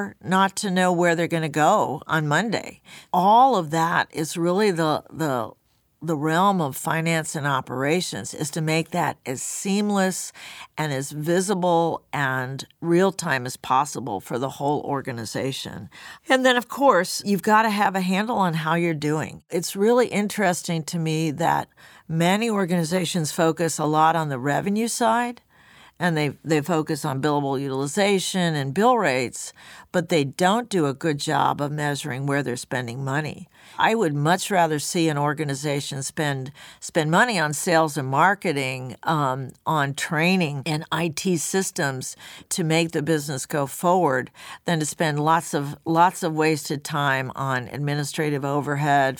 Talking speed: 160 wpm